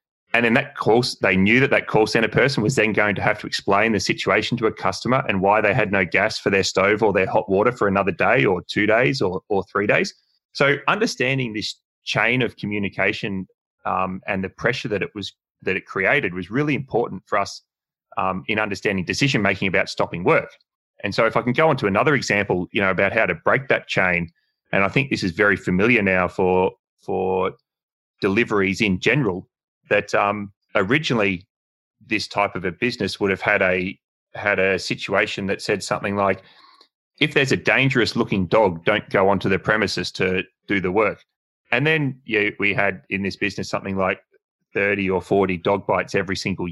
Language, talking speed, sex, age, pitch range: English, 200 wpm, male, 20-39, 95-115 Hz